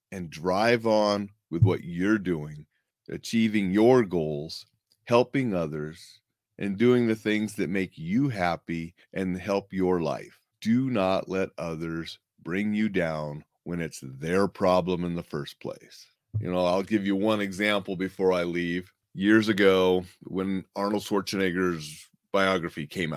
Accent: American